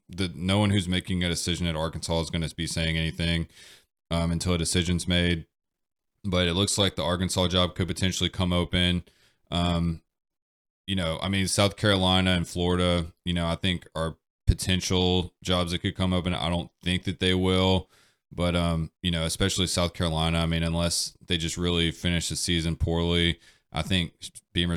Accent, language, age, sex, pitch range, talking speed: American, English, 20-39, male, 85-90 Hz, 185 wpm